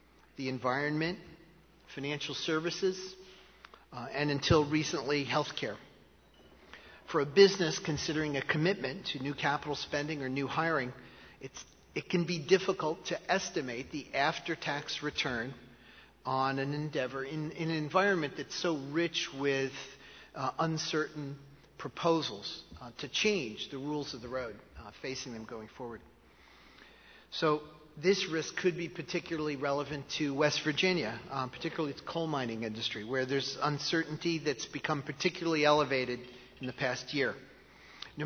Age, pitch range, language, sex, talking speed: 40-59, 135-165 Hz, English, male, 135 wpm